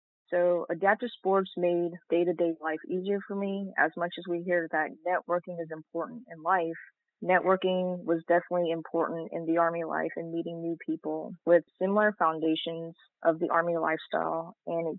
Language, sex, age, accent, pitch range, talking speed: English, female, 20-39, American, 160-180 Hz, 165 wpm